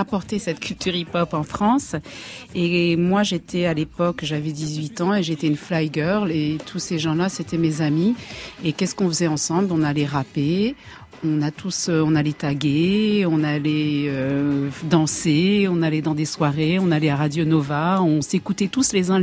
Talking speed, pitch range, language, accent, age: 180 wpm, 160-190 Hz, French, French, 50-69